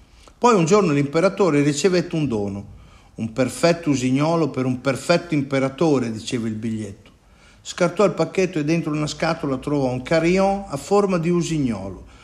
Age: 50-69